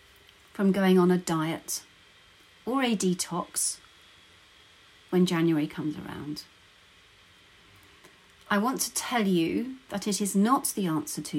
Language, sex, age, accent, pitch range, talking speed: English, female, 40-59, British, 155-205 Hz, 120 wpm